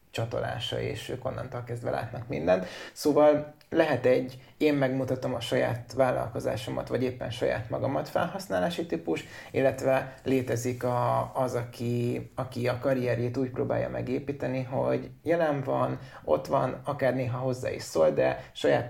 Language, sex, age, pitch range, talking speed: Hungarian, male, 20-39, 120-140 Hz, 135 wpm